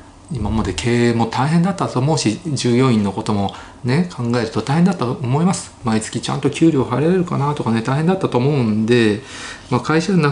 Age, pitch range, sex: 40-59, 105-145 Hz, male